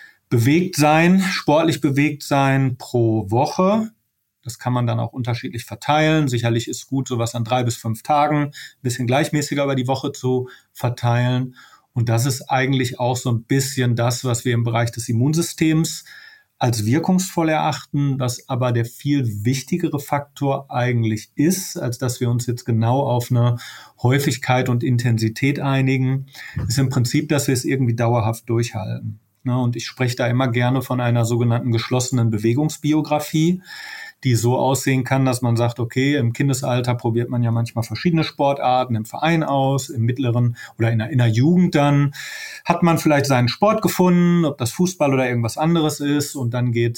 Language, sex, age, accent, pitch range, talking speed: German, male, 30-49, German, 120-150 Hz, 170 wpm